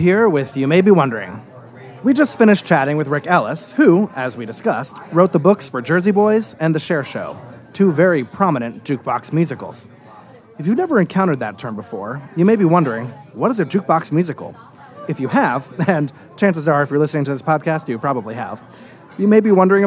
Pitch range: 135-190 Hz